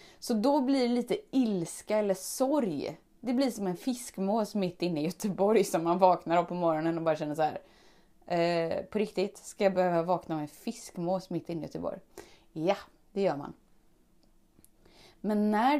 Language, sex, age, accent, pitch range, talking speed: Swedish, female, 20-39, native, 185-260 Hz, 180 wpm